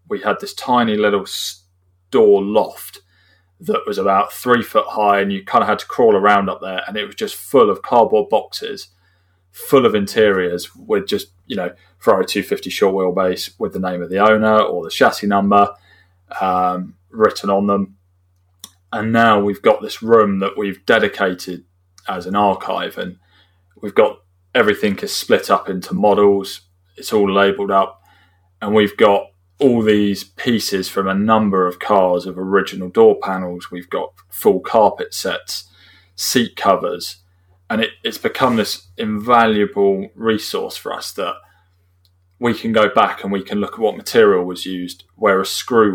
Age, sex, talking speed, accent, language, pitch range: 20-39, male, 165 wpm, British, English, 90-100 Hz